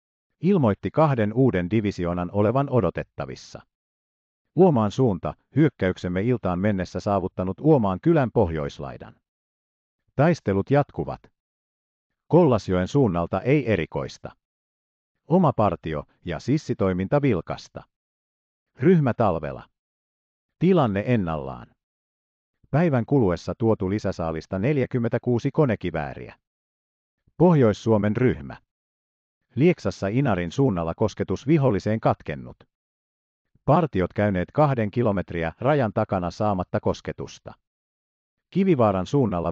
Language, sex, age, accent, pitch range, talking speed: Finnish, male, 50-69, native, 80-125 Hz, 80 wpm